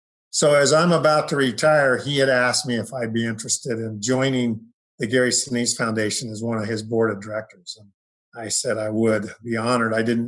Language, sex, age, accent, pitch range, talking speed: English, male, 50-69, American, 110-125 Hz, 210 wpm